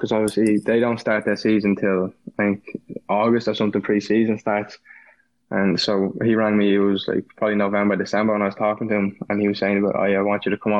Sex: male